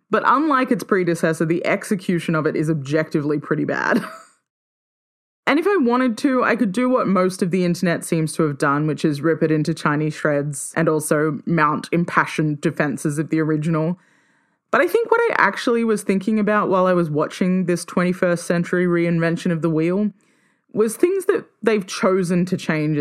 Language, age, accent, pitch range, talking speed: English, 20-39, Australian, 155-200 Hz, 185 wpm